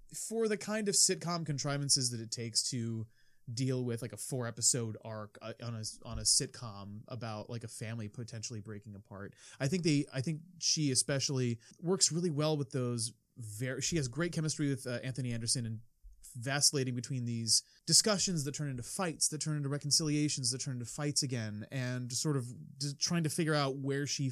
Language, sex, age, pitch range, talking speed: English, male, 30-49, 115-145 Hz, 190 wpm